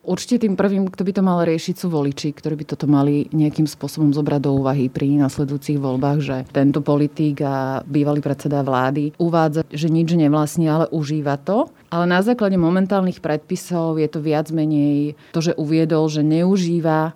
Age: 30-49